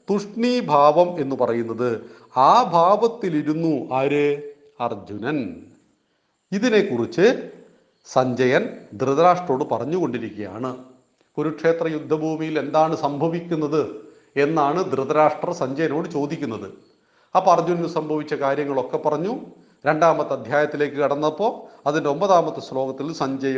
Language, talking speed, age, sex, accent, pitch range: Malayalam, 85 wpm, 40-59, male, native, 130-170 Hz